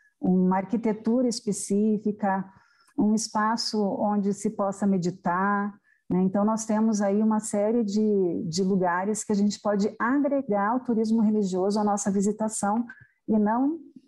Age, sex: 50-69, female